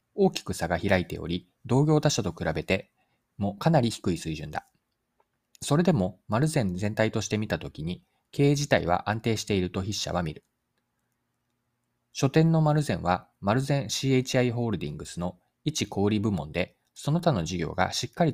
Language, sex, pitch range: Japanese, male, 95-135 Hz